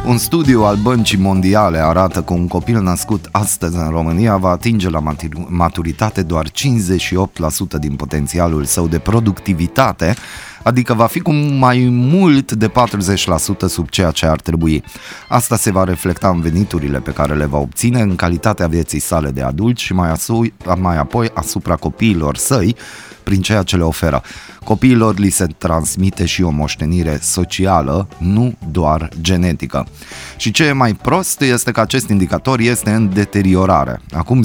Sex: male